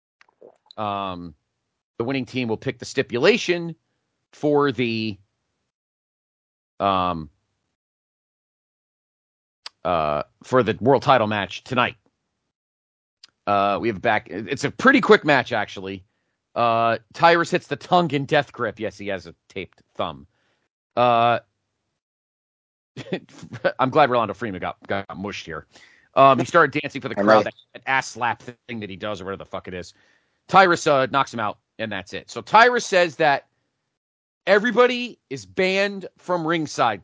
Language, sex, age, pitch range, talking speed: English, male, 40-59, 100-155 Hz, 145 wpm